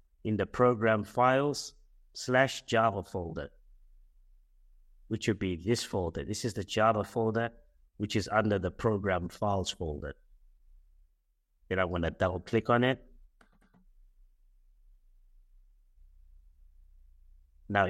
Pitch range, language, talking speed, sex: 80-110 Hz, English, 110 wpm, male